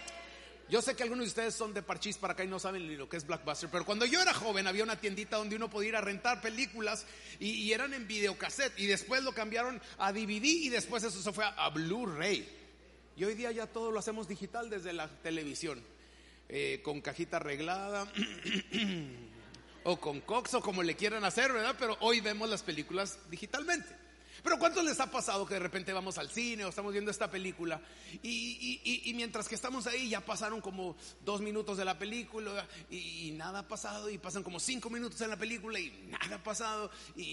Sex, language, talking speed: male, Spanish, 210 wpm